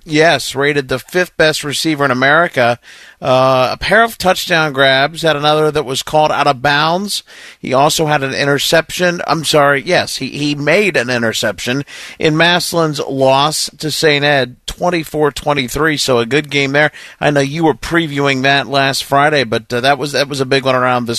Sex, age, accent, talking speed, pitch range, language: male, 50-69, American, 185 wpm, 135-165 Hz, English